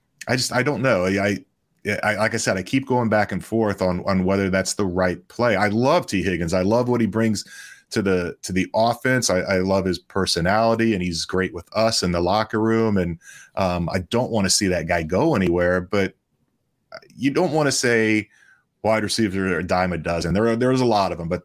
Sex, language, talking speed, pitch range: male, English, 230 wpm, 90-115 Hz